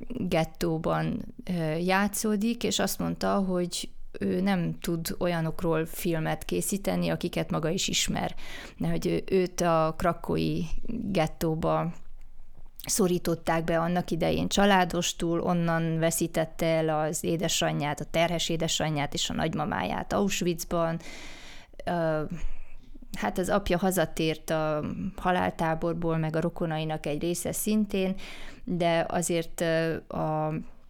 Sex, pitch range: female, 160-190 Hz